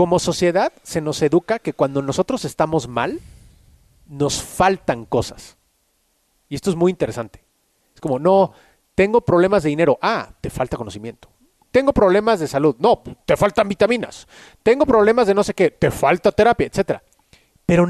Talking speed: 160 wpm